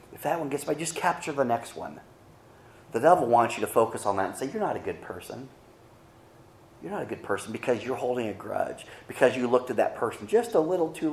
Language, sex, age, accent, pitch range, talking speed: English, male, 30-49, American, 100-130 Hz, 245 wpm